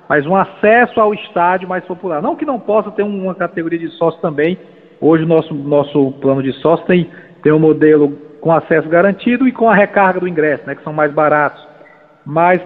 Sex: male